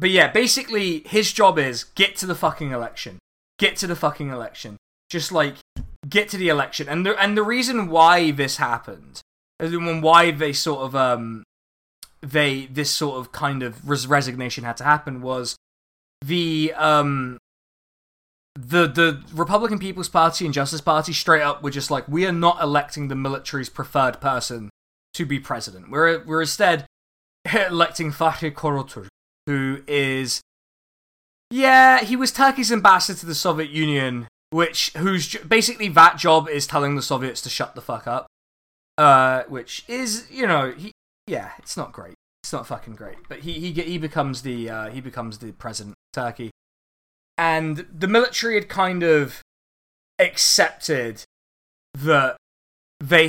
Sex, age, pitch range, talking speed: male, 20-39, 130-170 Hz, 155 wpm